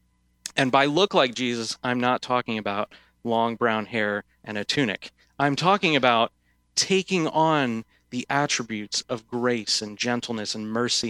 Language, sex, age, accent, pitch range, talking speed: English, male, 30-49, American, 105-130 Hz, 150 wpm